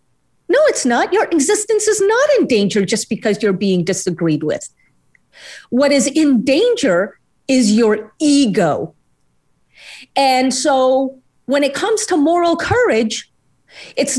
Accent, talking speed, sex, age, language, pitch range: American, 130 wpm, female, 40-59, English, 210-310 Hz